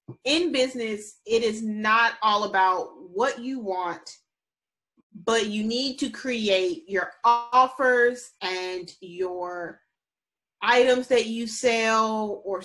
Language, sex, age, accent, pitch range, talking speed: English, female, 30-49, American, 185-235 Hz, 115 wpm